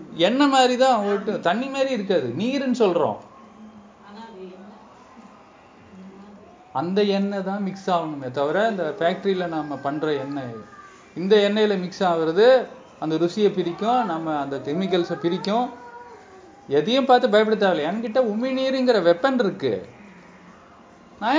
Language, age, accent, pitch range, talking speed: Tamil, 30-49, native, 170-235 Hz, 105 wpm